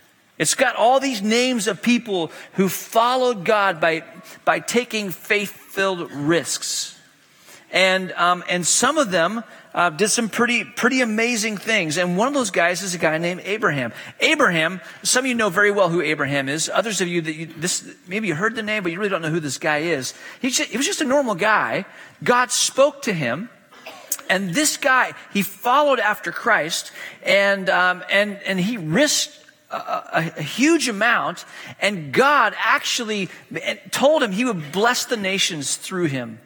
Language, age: English, 40-59